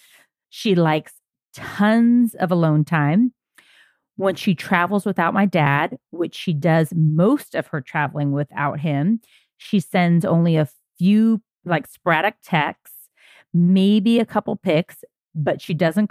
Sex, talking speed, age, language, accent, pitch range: female, 135 wpm, 40-59, English, American, 155-205 Hz